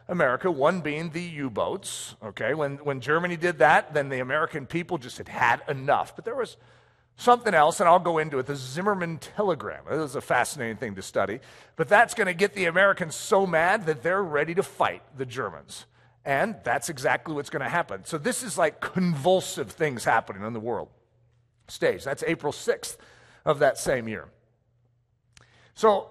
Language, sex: English, male